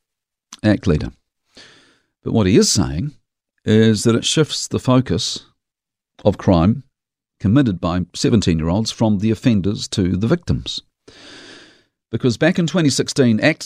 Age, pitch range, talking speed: 50-69, 100-130 Hz, 125 wpm